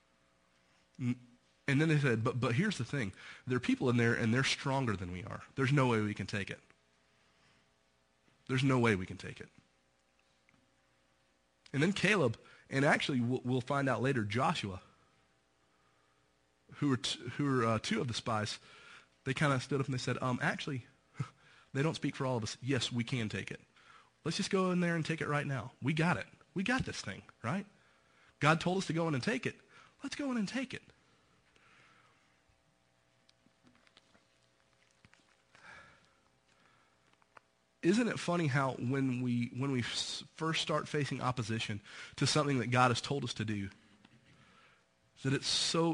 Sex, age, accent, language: male, 30-49, American, English